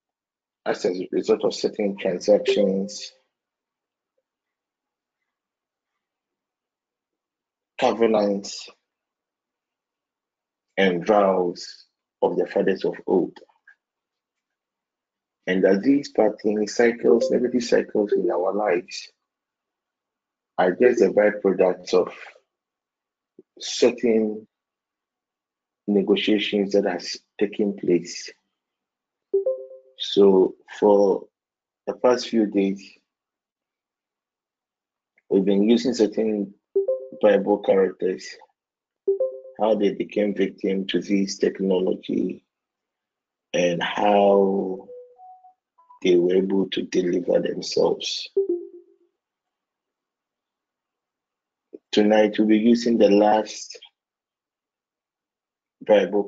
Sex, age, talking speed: male, 50-69, 75 wpm